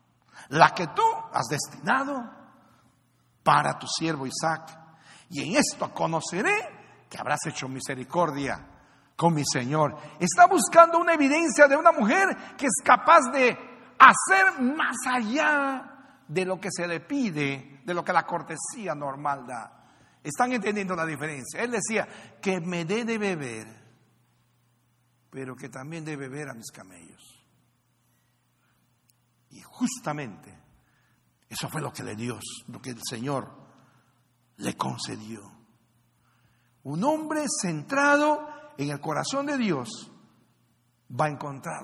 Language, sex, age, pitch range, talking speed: Spanish, male, 60-79, 125-200 Hz, 130 wpm